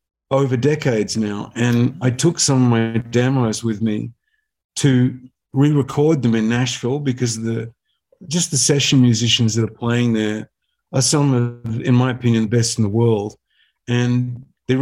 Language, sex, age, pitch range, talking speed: English, male, 50-69, 115-135 Hz, 160 wpm